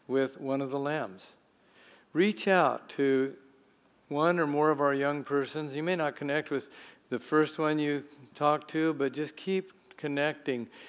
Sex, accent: male, American